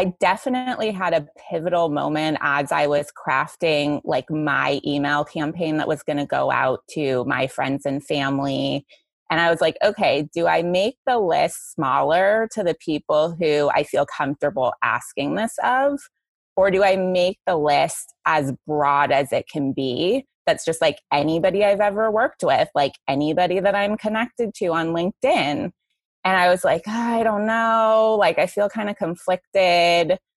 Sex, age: female, 20-39